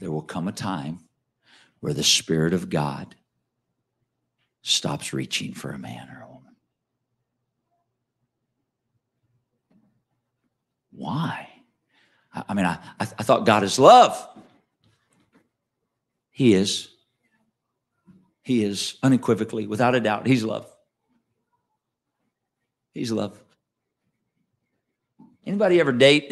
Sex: male